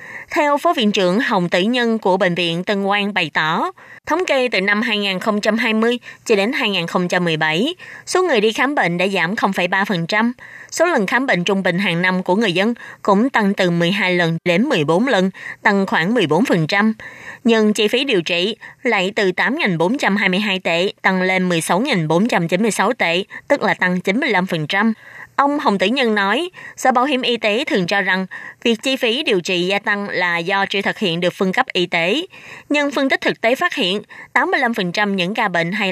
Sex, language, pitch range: female, Vietnamese, 185-240 Hz